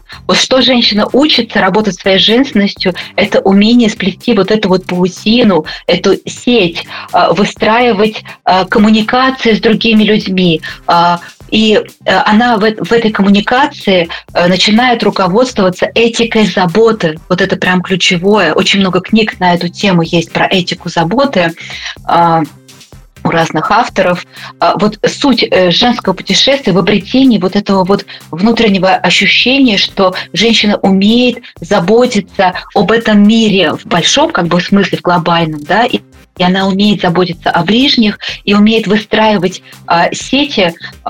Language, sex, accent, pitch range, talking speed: Russian, female, native, 180-220 Hz, 120 wpm